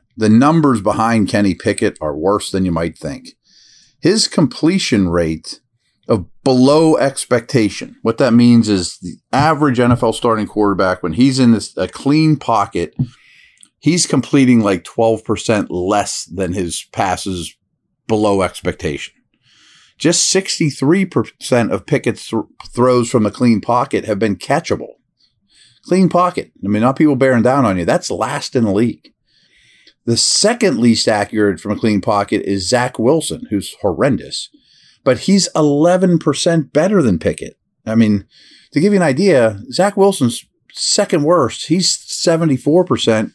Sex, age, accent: male, 40-59, American